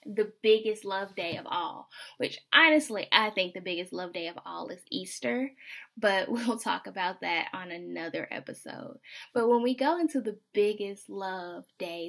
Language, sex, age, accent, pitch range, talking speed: English, female, 10-29, American, 195-250 Hz, 175 wpm